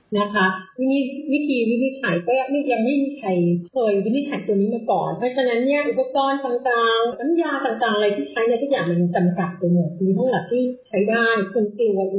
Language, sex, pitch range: Thai, female, 195-265 Hz